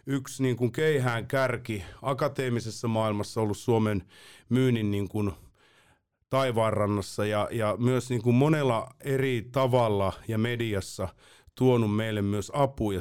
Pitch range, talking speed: 105-130 Hz, 130 wpm